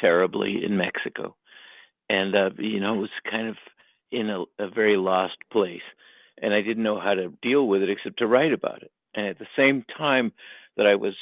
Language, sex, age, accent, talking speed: English, male, 50-69, American, 210 wpm